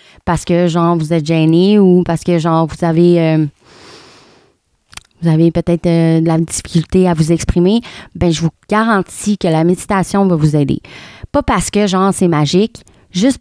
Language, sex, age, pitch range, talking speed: French, female, 30-49, 165-200 Hz, 165 wpm